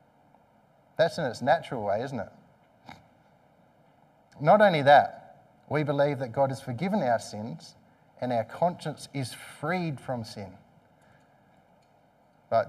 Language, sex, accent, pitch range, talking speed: English, male, Australian, 125-165 Hz, 125 wpm